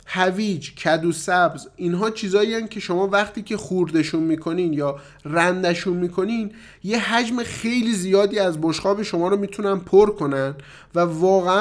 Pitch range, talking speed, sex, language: 160-210 Hz, 145 wpm, male, Persian